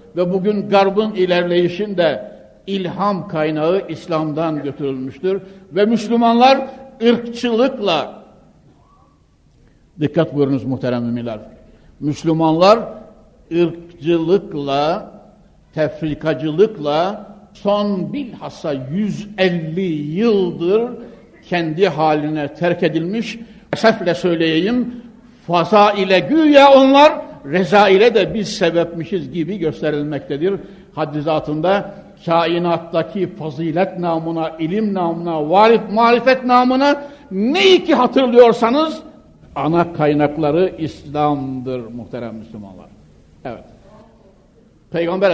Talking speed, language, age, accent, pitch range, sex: 75 wpm, Turkish, 60-79, native, 150-205 Hz, male